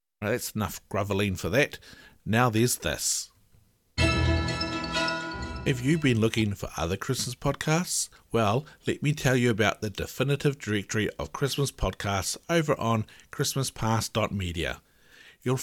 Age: 50-69